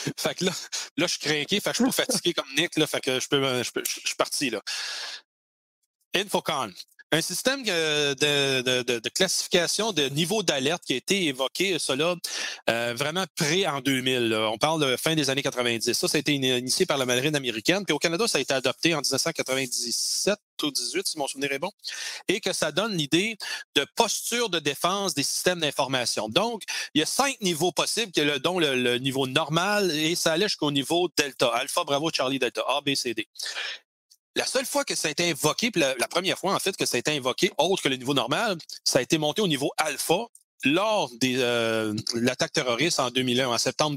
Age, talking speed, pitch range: 30-49, 205 wpm, 135-185 Hz